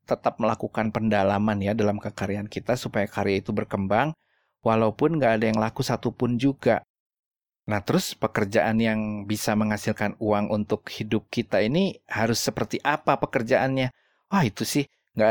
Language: Indonesian